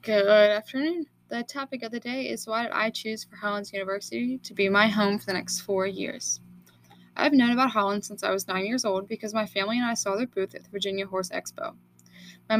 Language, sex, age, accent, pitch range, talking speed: English, female, 10-29, American, 190-225 Hz, 230 wpm